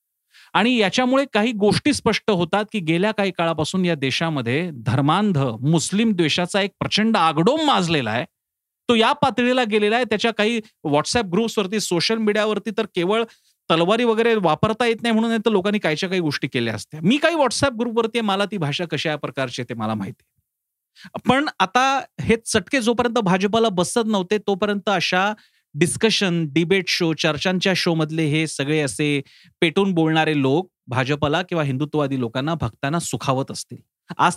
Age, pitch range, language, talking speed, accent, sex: 40-59, 155-215 Hz, Marathi, 110 wpm, native, male